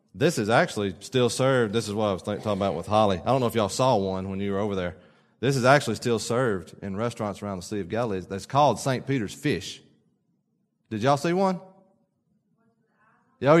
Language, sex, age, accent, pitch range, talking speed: English, male, 30-49, American, 110-155 Hz, 210 wpm